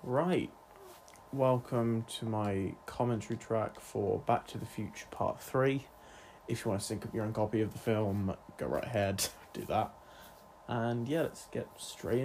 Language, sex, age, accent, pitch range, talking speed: English, male, 20-39, British, 105-125 Hz, 170 wpm